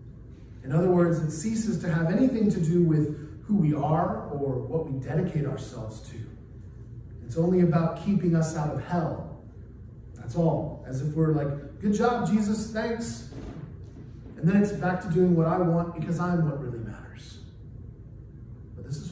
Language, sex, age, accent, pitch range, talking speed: English, male, 30-49, American, 125-175 Hz, 175 wpm